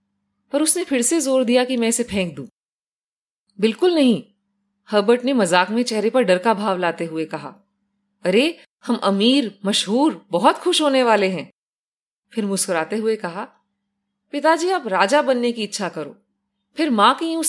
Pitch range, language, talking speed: 200-265 Hz, Hindi, 170 wpm